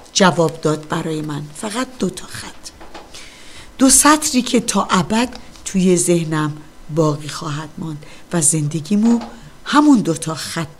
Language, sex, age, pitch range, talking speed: Persian, female, 50-69, 160-225 Hz, 135 wpm